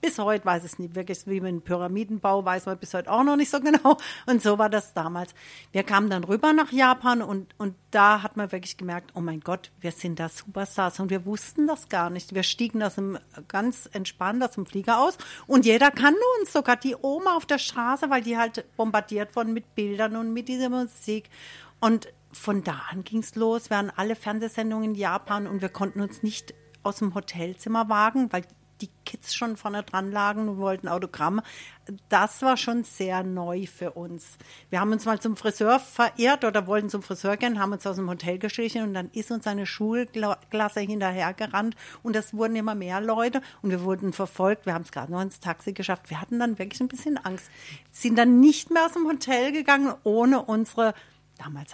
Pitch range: 185-235 Hz